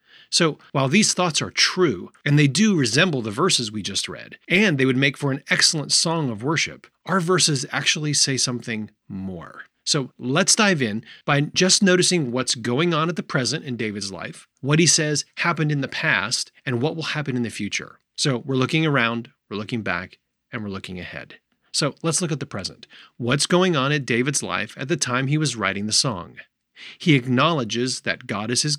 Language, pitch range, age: English, 120-165 Hz, 30-49